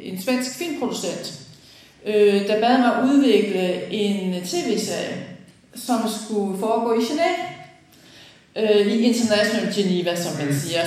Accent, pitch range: native, 175-225 Hz